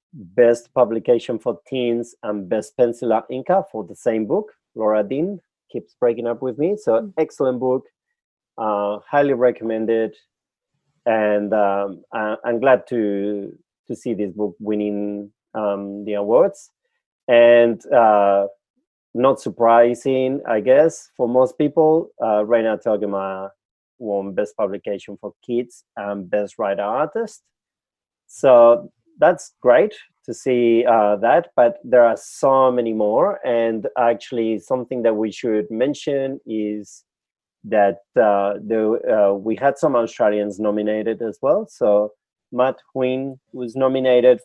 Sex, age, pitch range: male, 30-49, 105-130 Hz